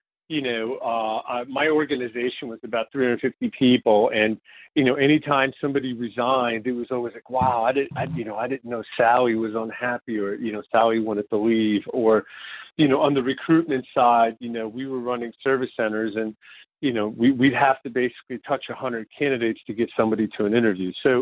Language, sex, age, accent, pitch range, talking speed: English, male, 50-69, American, 115-145 Hz, 200 wpm